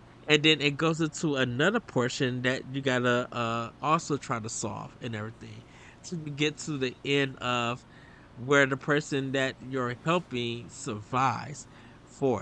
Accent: American